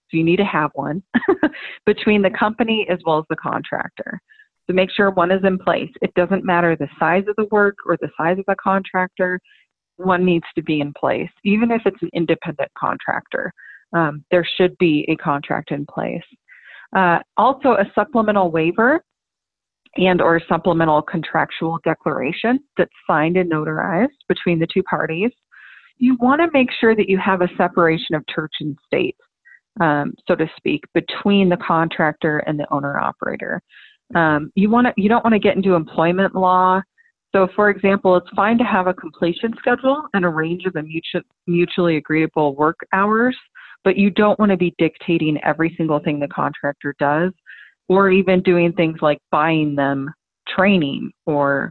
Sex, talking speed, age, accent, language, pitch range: female, 170 wpm, 30-49, American, English, 160-205 Hz